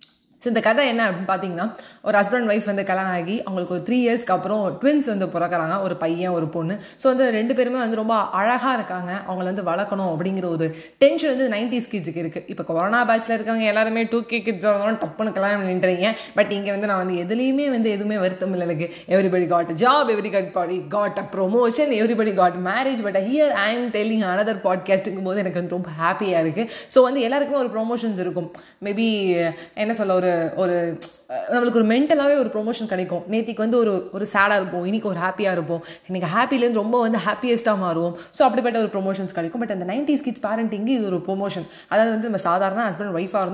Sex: female